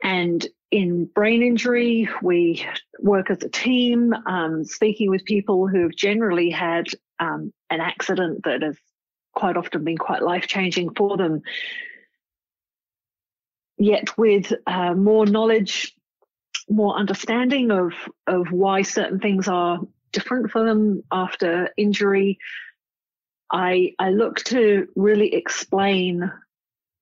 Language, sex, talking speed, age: English, female, 120 wpm, 40-59